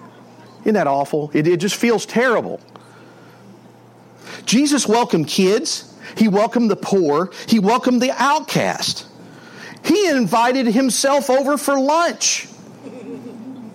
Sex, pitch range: male, 200-270 Hz